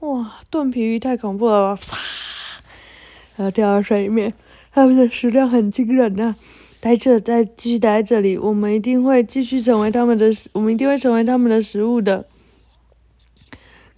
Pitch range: 195-320 Hz